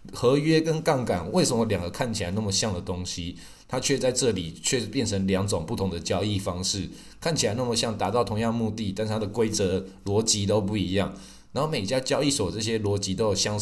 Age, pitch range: 20-39, 100-130 Hz